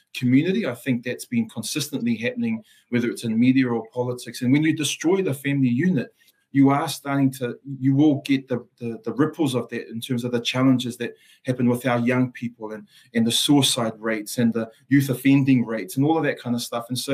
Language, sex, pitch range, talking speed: English, male, 120-140 Hz, 220 wpm